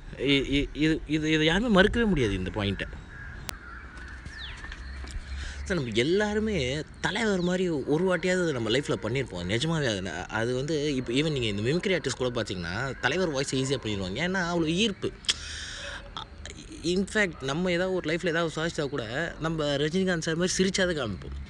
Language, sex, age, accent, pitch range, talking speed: Tamil, male, 20-39, native, 120-180 Hz, 145 wpm